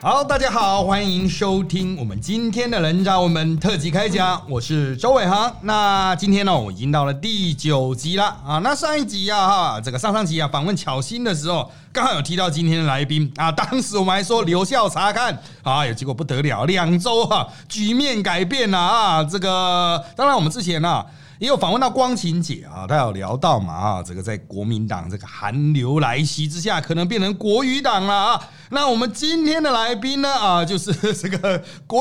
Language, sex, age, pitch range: Chinese, male, 30-49, 145-215 Hz